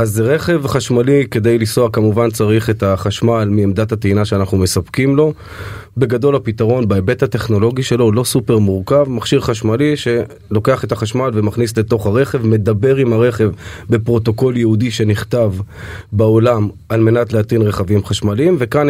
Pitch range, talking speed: 105-130 Hz, 145 wpm